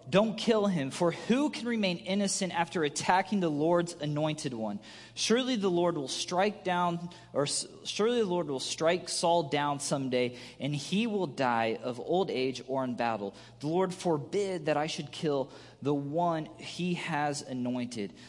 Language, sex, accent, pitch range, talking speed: English, male, American, 145-185 Hz, 165 wpm